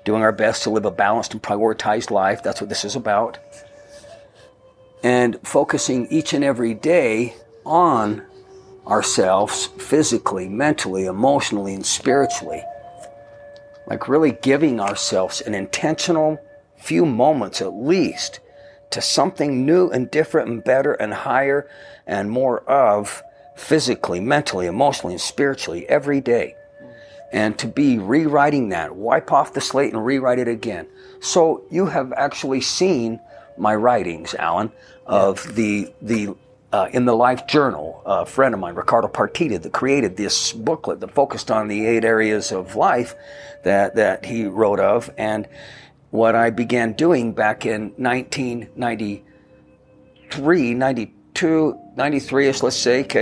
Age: 50-69